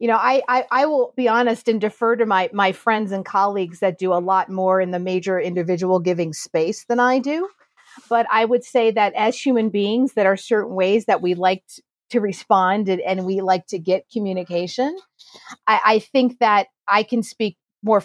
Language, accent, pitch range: English, American, 185-235 Hz